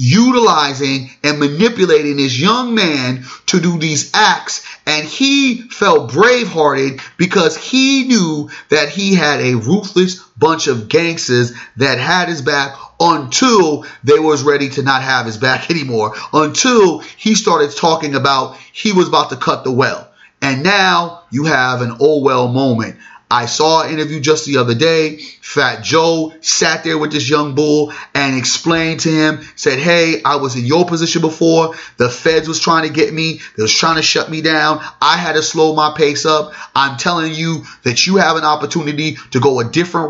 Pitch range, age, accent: 135-165 Hz, 30-49, American